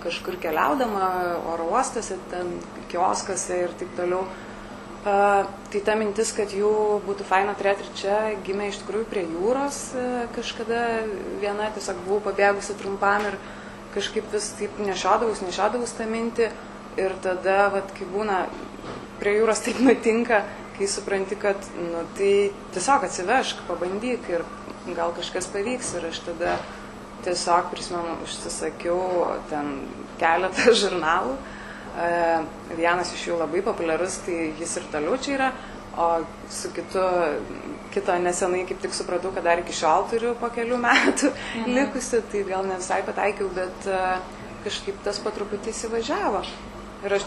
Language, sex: English, female